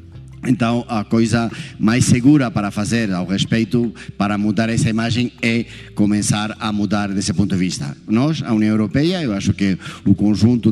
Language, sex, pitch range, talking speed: Portuguese, male, 100-120 Hz, 170 wpm